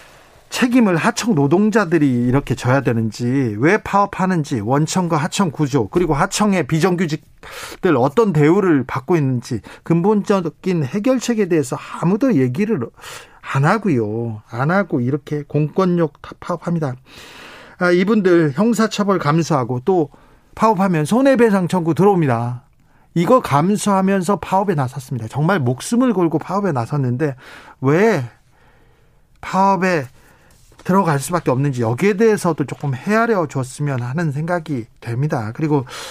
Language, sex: Korean, male